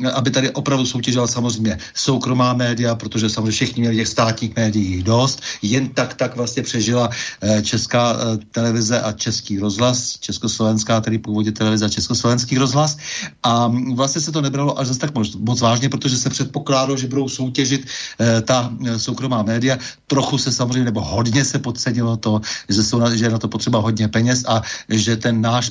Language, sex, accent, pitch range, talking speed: Czech, male, native, 115-130 Hz, 170 wpm